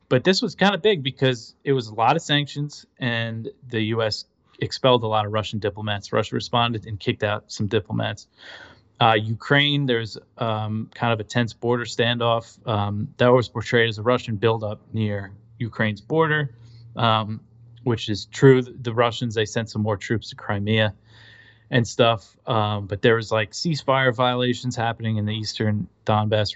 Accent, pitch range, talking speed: American, 105-125 Hz, 175 wpm